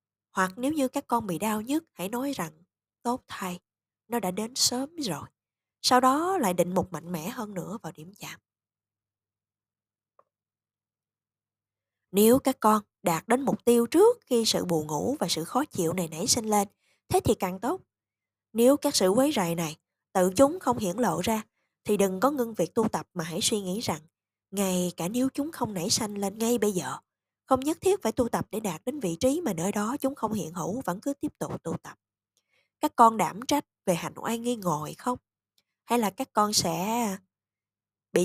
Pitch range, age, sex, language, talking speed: 170-245 Hz, 20-39, female, Vietnamese, 200 wpm